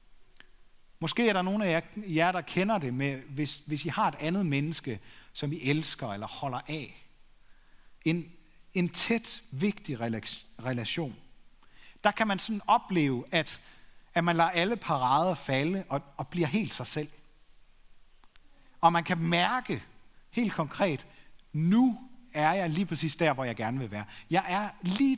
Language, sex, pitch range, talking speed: Danish, male, 140-195 Hz, 160 wpm